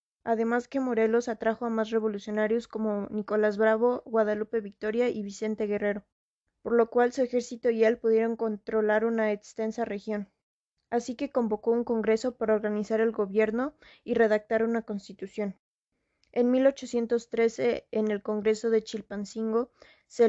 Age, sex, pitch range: 20-39, female, 215-240 Hz